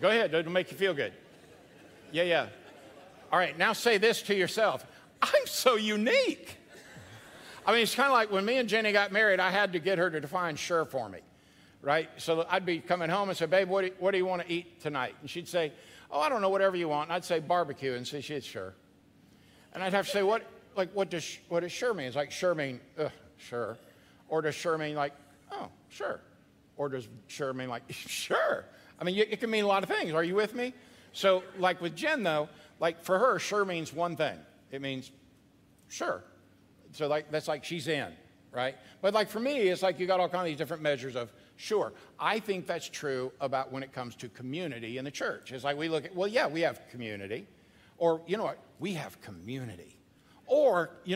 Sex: male